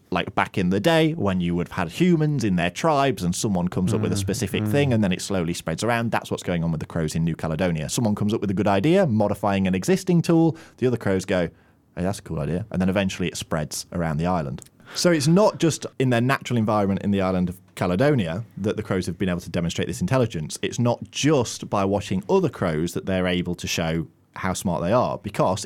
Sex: male